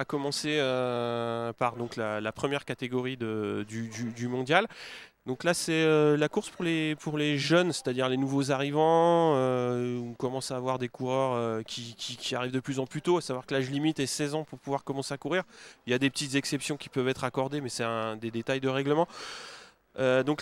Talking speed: 230 wpm